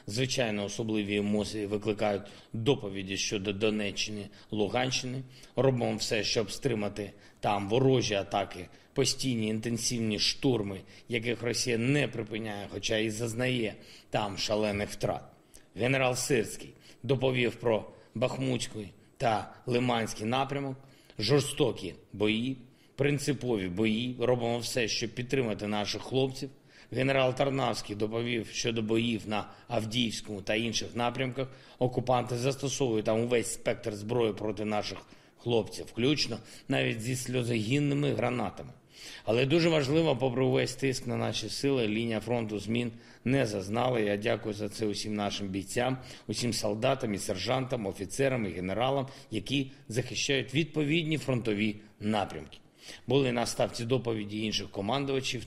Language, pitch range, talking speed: Ukrainian, 105-130 Hz, 120 wpm